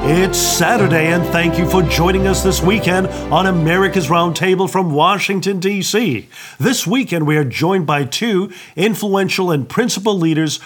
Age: 50-69